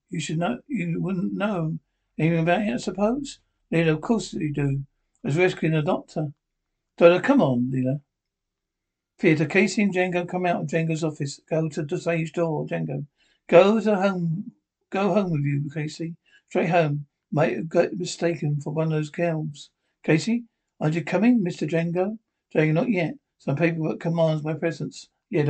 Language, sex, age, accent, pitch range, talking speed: English, male, 60-79, British, 150-175 Hz, 175 wpm